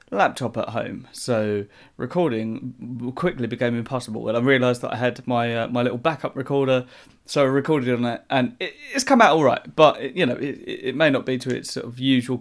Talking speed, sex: 225 wpm, male